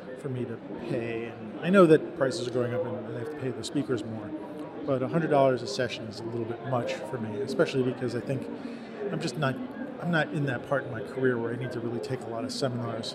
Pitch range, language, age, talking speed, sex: 125-150 Hz, English, 40-59, 255 wpm, male